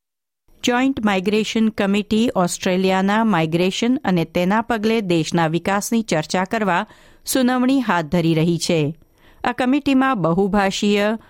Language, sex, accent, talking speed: Gujarati, female, native, 105 wpm